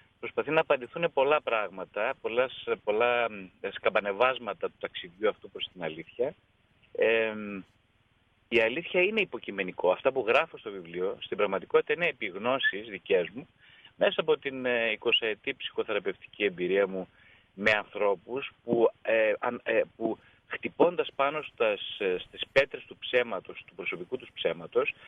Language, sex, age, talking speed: Greek, male, 30-49, 135 wpm